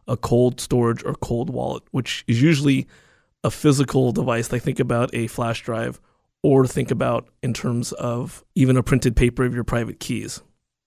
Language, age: English, 30-49